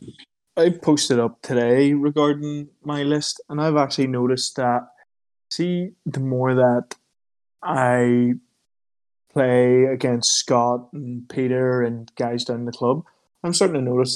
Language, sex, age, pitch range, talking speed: English, male, 20-39, 115-135 Hz, 135 wpm